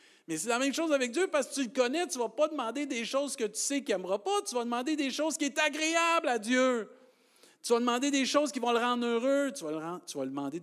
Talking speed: 275 wpm